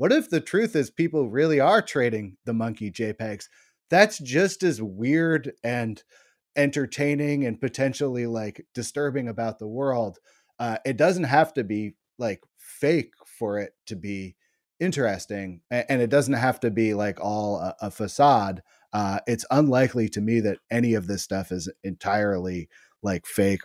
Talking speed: 160 wpm